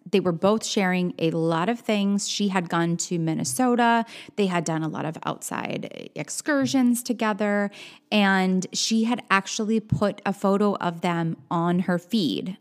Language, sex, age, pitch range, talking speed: English, female, 20-39, 175-230 Hz, 160 wpm